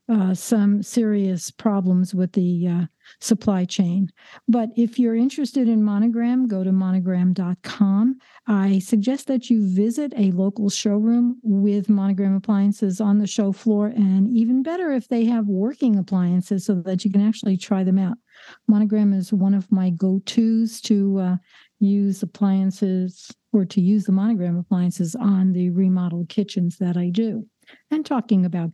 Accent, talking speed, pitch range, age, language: American, 155 wpm, 190-225 Hz, 60-79, English